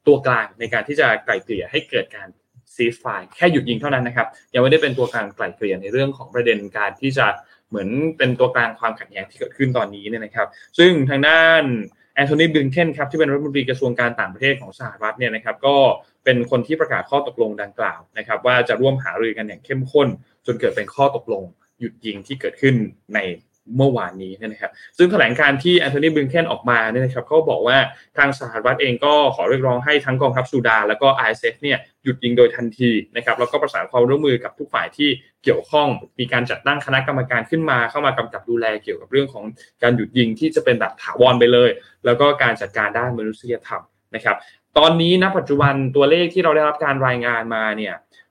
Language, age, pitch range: Thai, 20-39, 120-145 Hz